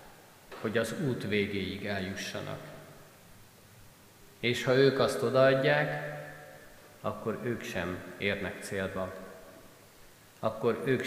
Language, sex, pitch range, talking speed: Hungarian, male, 105-165 Hz, 90 wpm